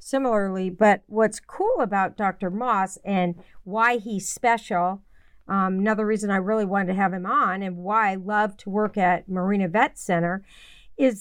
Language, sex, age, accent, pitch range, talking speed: English, female, 50-69, American, 200-245 Hz, 170 wpm